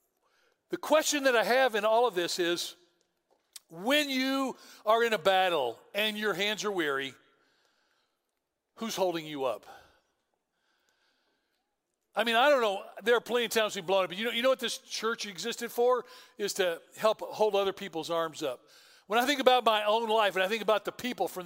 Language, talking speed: English, 195 wpm